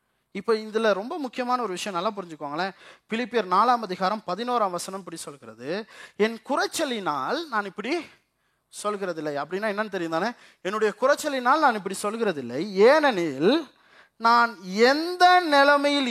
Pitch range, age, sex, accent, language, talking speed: 185-275 Hz, 30-49, male, native, Tamil, 125 wpm